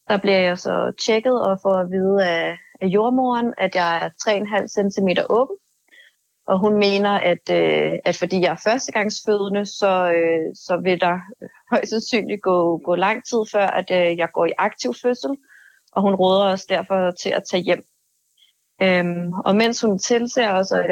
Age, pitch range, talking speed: 30-49, 180-210 Hz, 180 wpm